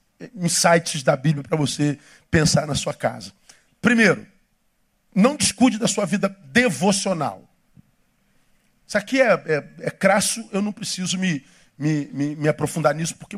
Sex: male